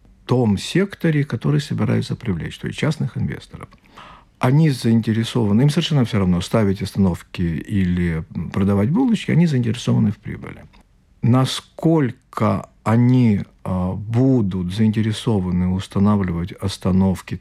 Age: 50-69